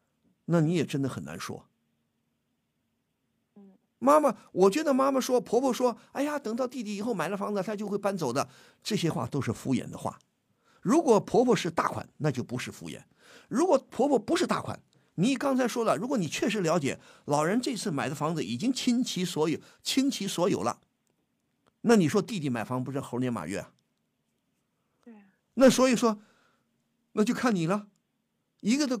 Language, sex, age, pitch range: Chinese, male, 50-69, 140-235 Hz